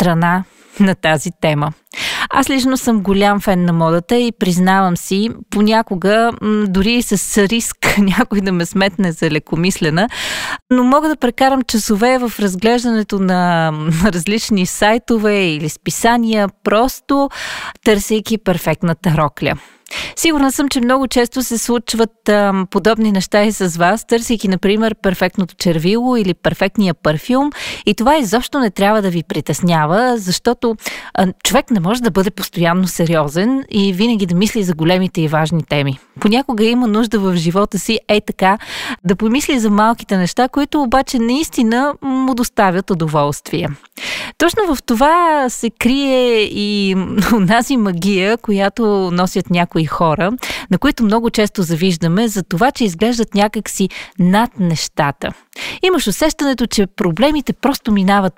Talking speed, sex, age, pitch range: 140 wpm, female, 20-39, 185-240 Hz